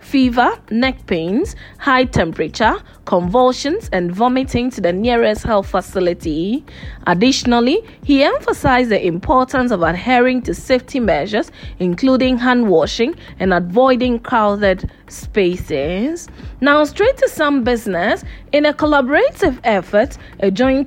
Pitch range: 200-260 Hz